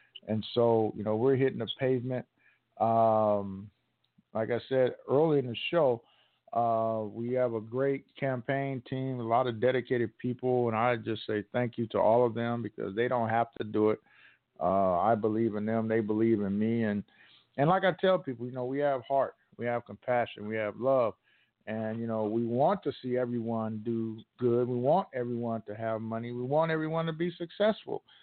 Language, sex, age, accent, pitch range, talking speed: English, male, 50-69, American, 115-140 Hz, 200 wpm